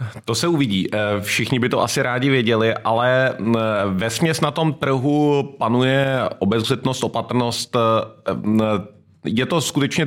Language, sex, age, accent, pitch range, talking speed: Czech, male, 30-49, native, 110-125 Hz, 125 wpm